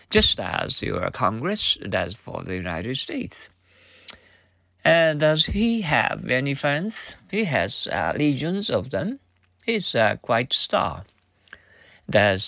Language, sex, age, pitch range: Japanese, male, 50-69, 100-155 Hz